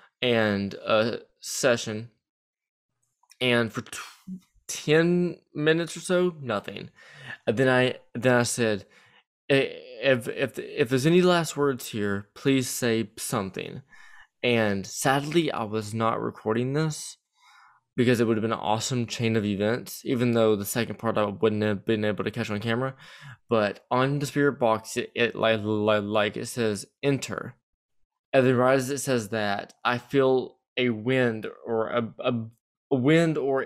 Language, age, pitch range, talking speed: English, 20-39, 115-140 Hz, 155 wpm